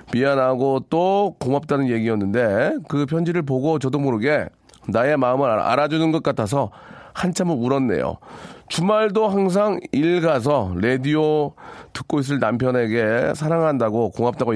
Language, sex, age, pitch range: Korean, male, 40-59, 110-160 Hz